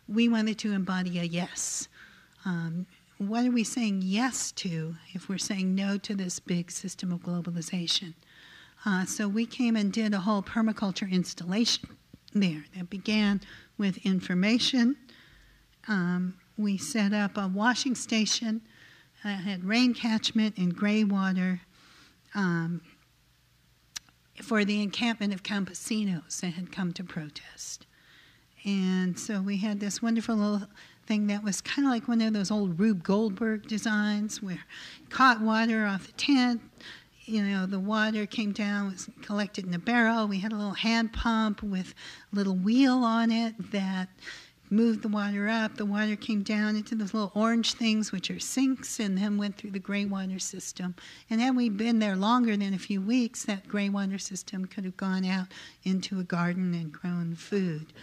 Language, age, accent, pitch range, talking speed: English, 50-69, American, 185-220 Hz, 165 wpm